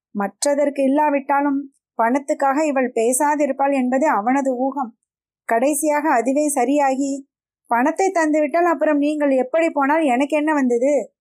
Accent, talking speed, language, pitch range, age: native, 105 wpm, Tamil, 245-295 Hz, 20-39